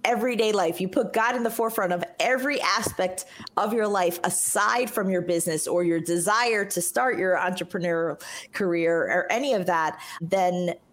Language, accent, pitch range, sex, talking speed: English, American, 175-235 Hz, female, 170 wpm